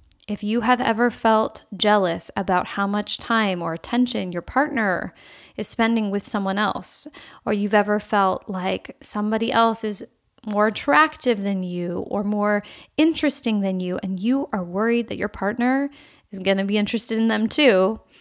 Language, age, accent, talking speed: English, 10-29, American, 170 wpm